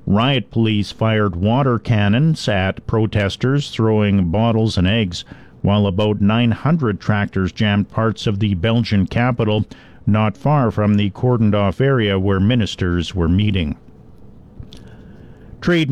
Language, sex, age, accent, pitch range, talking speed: English, male, 50-69, American, 100-120 Hz, 130 wpm